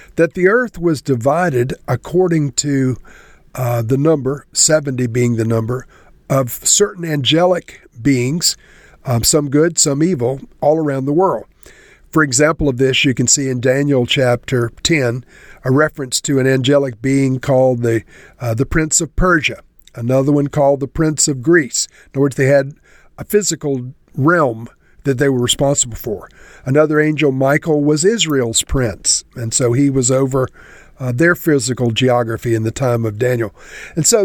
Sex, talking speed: male, 165 wpm